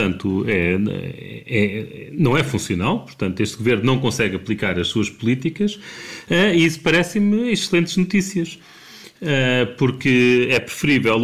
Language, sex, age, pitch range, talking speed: Portuguese, male, 30-49, 115-145 Hz, 110 wpm